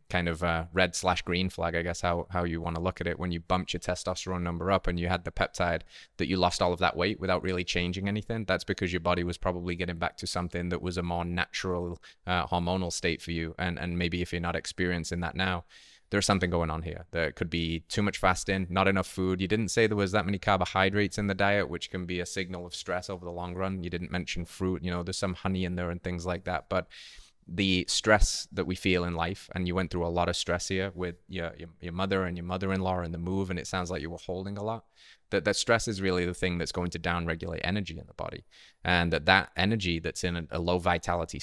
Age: 20-39